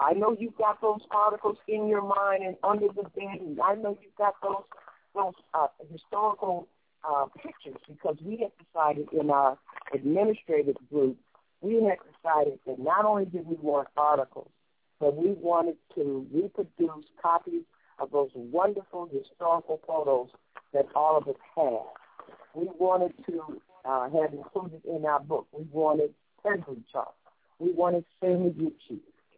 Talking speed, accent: 155 wpm, American